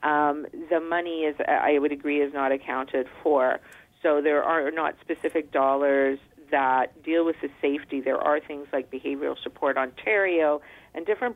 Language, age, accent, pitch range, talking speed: English, 40-59, American, 140-160 Hz, 165 wpm